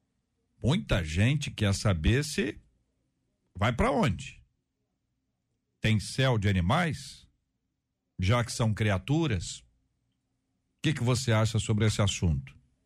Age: 60-79